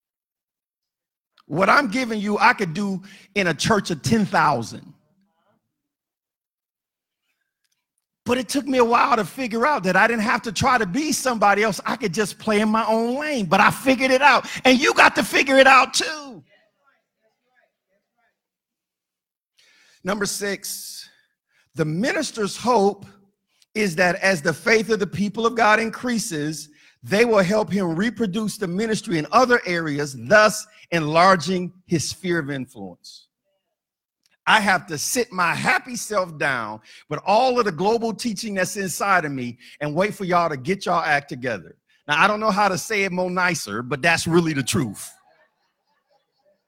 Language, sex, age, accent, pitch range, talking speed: English, male, 50-69, American, 175-235 Hz, 160 wpm